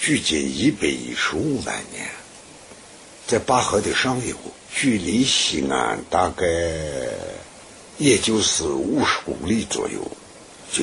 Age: 60-79